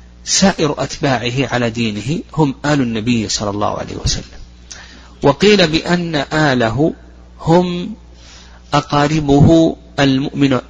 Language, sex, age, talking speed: Arabic, male, 50-69, 95 wpm